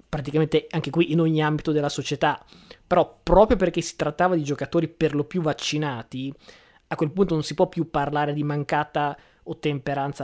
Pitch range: 145-170 Hz